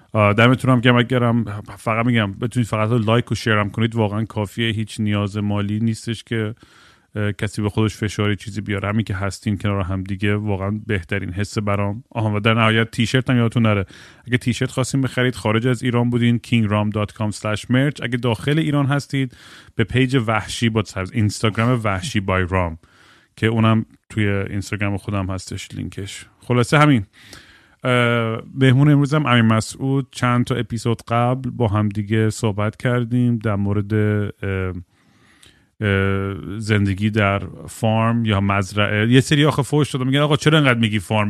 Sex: male